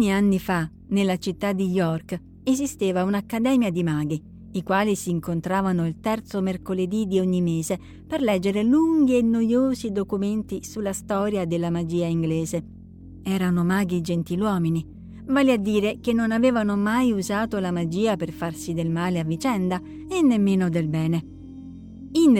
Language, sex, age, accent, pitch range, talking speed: Italian, female, 50-69, native, 175-230 Hz, 145 wpm